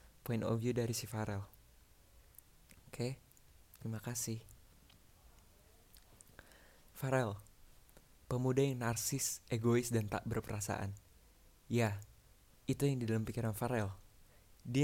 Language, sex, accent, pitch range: Indonesian, male, native, 105-130 Hz